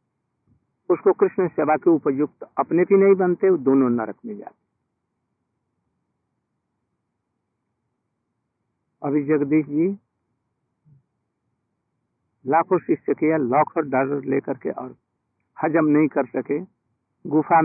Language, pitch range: Hindi, 130-160 Hz